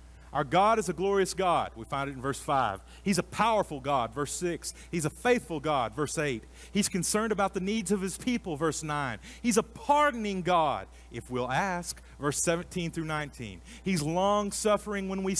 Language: English